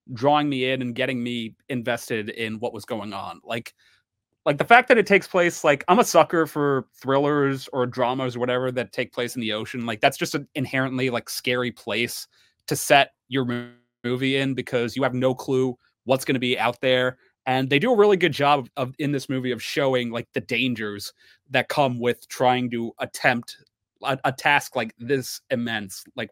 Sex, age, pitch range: male, 30-49, 125-145 Hz